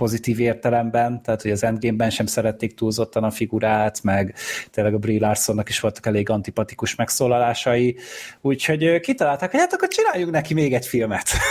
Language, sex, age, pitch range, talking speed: Hungarian, male, 30-49, 115-155 Hz, 160 wpm